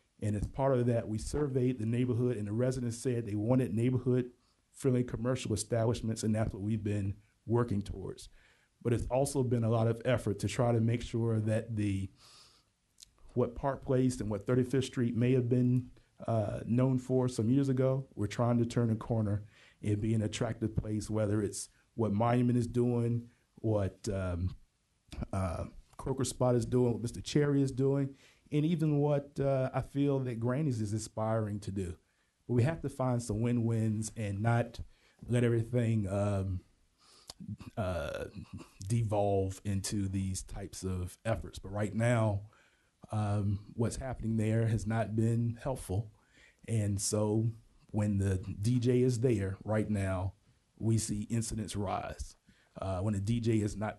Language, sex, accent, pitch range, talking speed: English, male, American, 105-125 Hz, 160 wpm